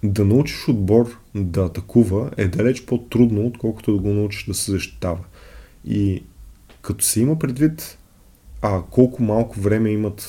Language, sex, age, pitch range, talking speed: Bulgarian, male, 20-39, 100-115 Hz, 145 wpm